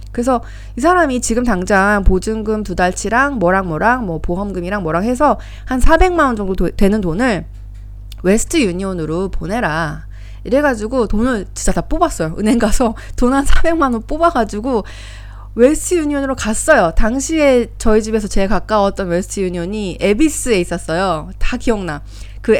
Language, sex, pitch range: Korean, female, 175-255 Hz